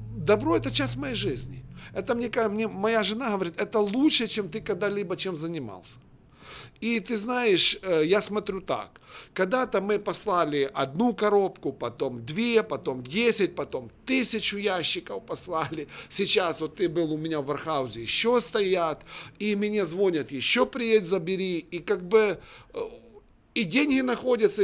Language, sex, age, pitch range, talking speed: Russian, male, 50-69, 155-215 Hz, 145 wpm